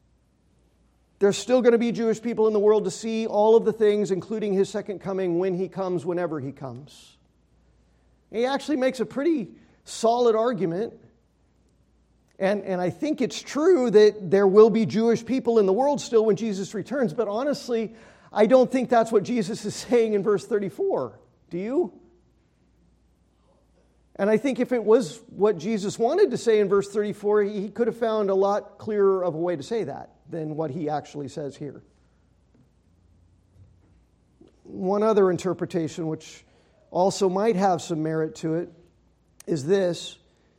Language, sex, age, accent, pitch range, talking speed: English, male, 40-59, American, 165-220 Hz, 165 wpm